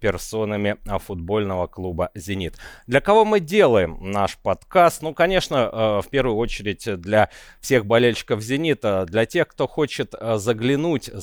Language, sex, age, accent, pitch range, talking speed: Russian, male, 30-49, native, 100-140 Hz, 130 wpm